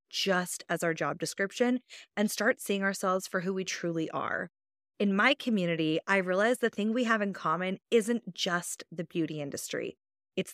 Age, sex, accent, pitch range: 20-39, female, American, 180-230 Hz